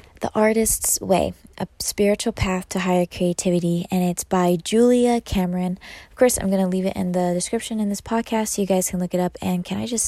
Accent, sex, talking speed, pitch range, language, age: American, female, 220 wpm, 180-215 Hz, English, 20-39